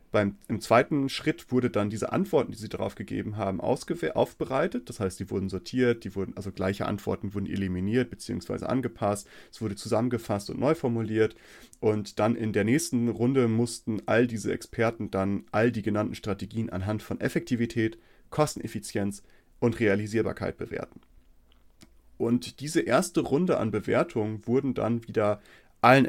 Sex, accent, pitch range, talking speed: male, German, 100-125 Hz, 145 wpm